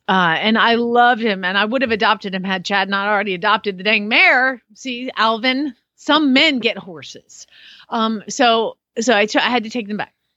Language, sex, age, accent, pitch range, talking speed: English, female, 30-49, American, 185-235 Hz, 210 wpm